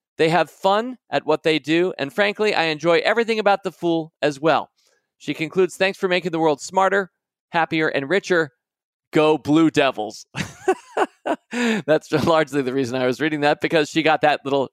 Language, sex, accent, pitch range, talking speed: English, male, American, 135-165 Hz, 180 wpm